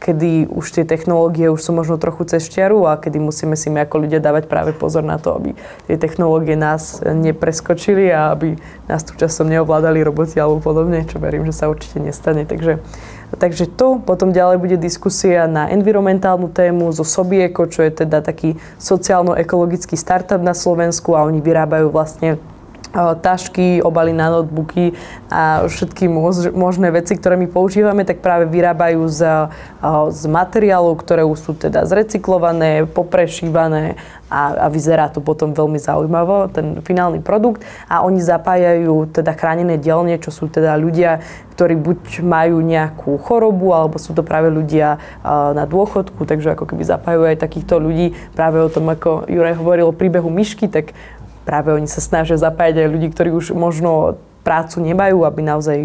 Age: 20-39